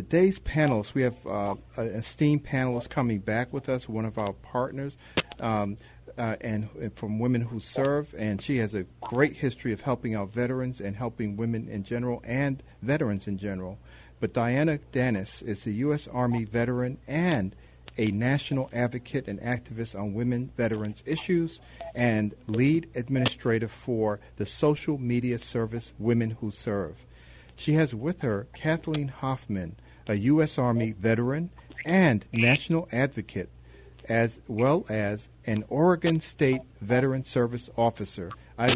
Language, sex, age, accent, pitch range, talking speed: English, male, 50-69, American, 110-135 Hz, 145 wpm